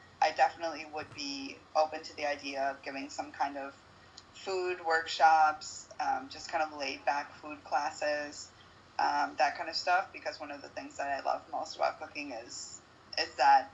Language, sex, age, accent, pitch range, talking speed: English, female, 20-39, American, 135-160 Hz, 185 wpm